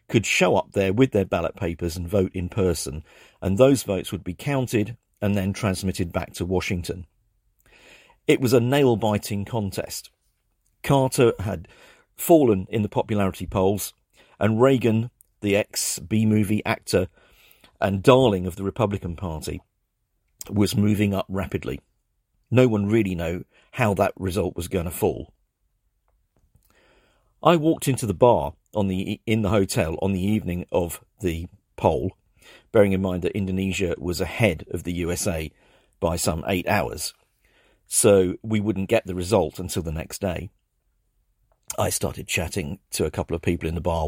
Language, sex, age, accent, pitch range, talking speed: English, male, 50-69, British, 90-110 Hz, 150 wpm